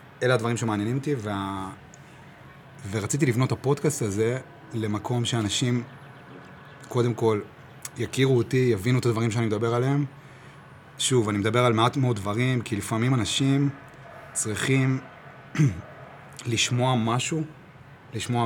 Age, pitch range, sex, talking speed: 30-49, 110-140 Hz, male, 115 wpm